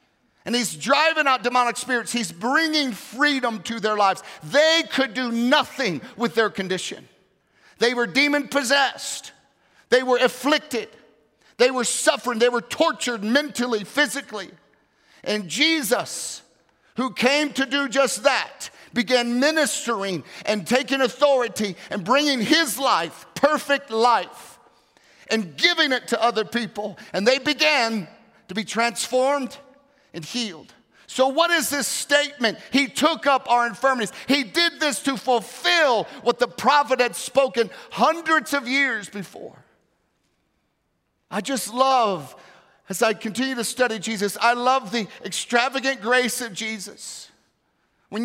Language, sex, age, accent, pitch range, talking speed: English, male, 50-69, American, 225-275 Hz, 135 wpm